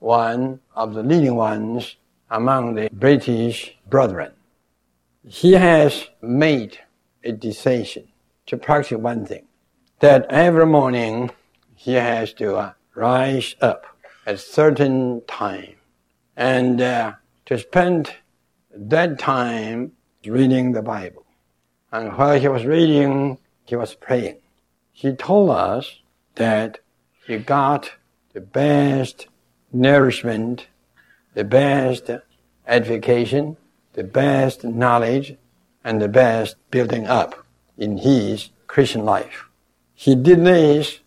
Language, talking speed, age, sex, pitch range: English, 110 wpm, 60-79, male, 105-135 Hz